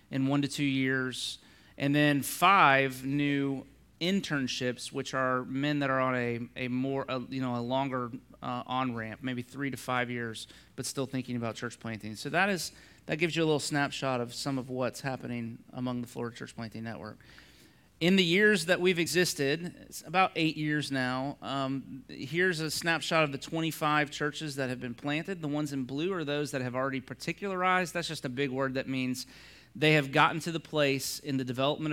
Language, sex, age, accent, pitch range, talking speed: English, male, 30-49, American, 125-150 Hz, 200 wpm